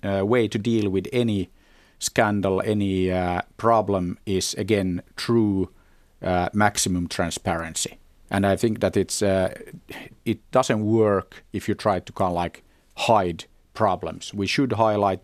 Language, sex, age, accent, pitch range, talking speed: Finnish, male, 50-69, native, 90-110 Hz, 145 wpm